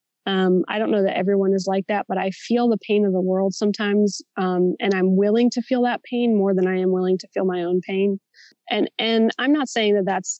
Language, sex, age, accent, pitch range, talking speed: English, female, 20-39, American, 195-235 Hz, 250 wpm